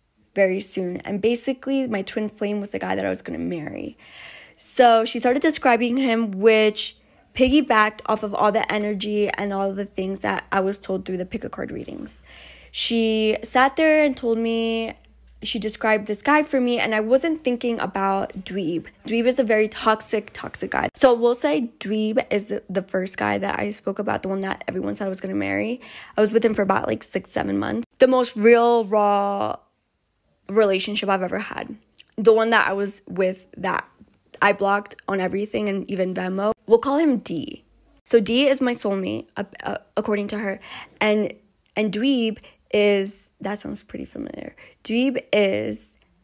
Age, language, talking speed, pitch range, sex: 10-29, English, 185 wpm, 195-235 Hz, female